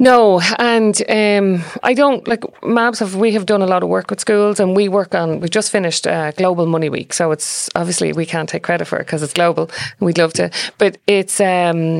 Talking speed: 235 wpm